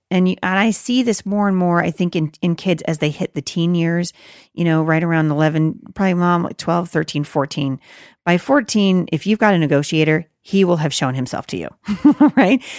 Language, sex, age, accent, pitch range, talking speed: English, female, 40-59, American, 160-215 Hz, 215 wpm